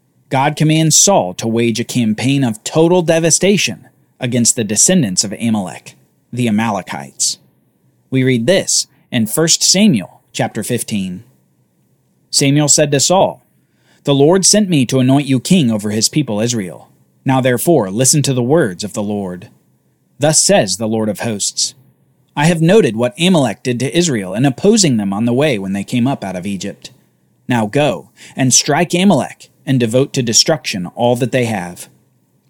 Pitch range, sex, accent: 110-160 Hz, male, American